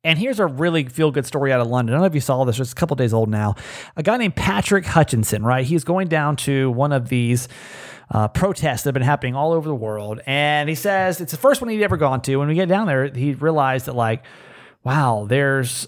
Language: English